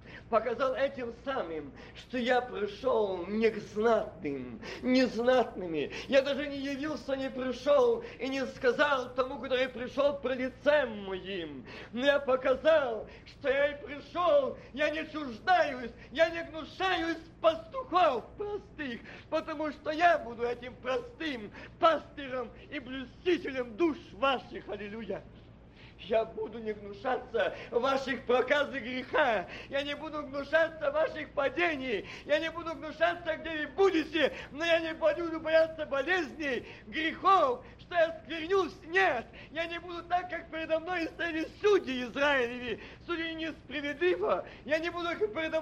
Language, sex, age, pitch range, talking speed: Russian, male, 40-59, 255-330 Hz, 135 wpm